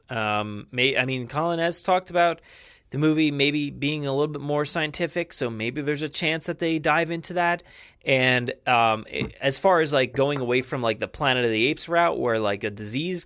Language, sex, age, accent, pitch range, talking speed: English, male, 20-39, American, 110-150 Hz, 215 wpm